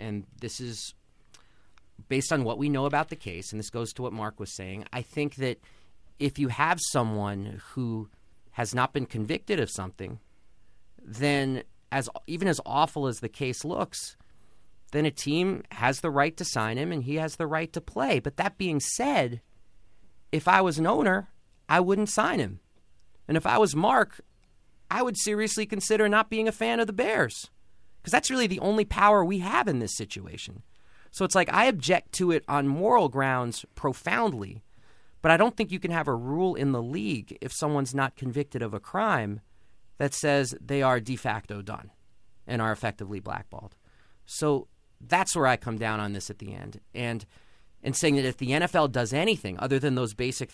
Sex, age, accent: male, 30-49, American